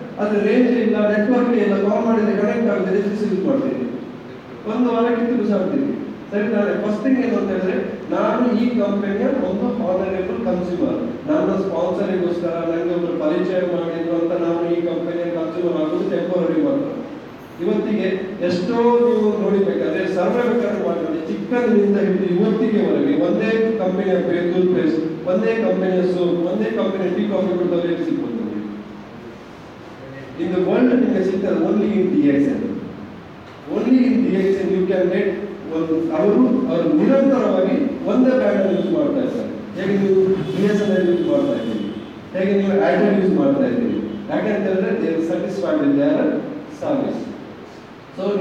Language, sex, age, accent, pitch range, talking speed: English, male, 40-59, Indian, 180-240 Hz, 80 wpm